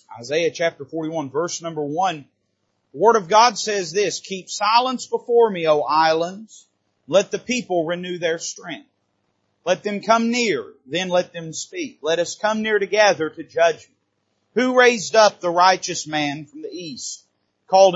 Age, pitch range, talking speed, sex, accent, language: 30-49, 150-205 Hz, 165 wpm, male, American, English